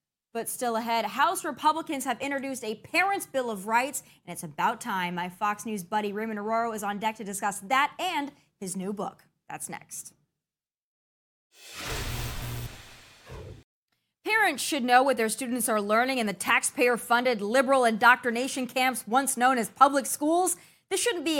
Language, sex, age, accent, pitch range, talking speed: English, female, 20-39, American, 215-305 Hz, 155 wpm